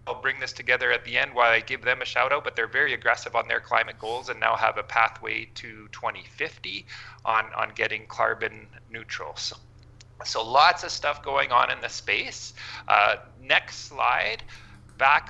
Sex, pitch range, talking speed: male, 115-135 Hz, 190 wpm